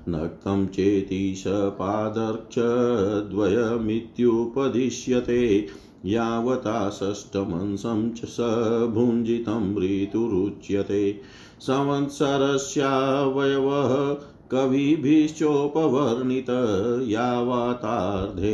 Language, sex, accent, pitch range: Hindi, male, native, 100-125 Hz